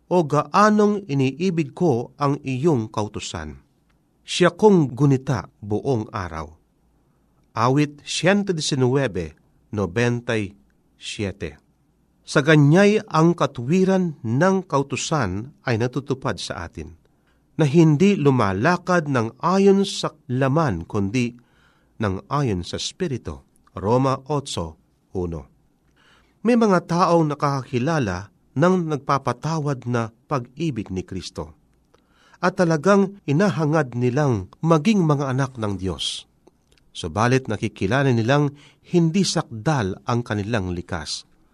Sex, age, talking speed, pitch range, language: male, 40-59, 95 wpm, 105-165 Hz, Filipino